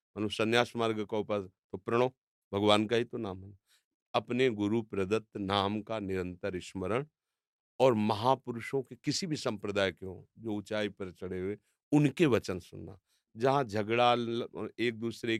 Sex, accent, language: male, native, Hindi